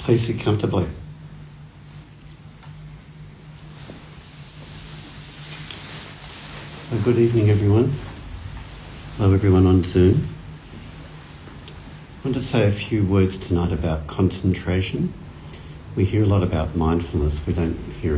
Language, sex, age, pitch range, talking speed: English, male, 60-79, 75-95 Hz, 95 wpm